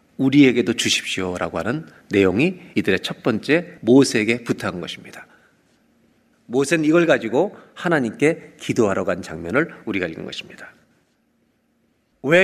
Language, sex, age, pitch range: Korean, male, 40-59, 115-165 Hz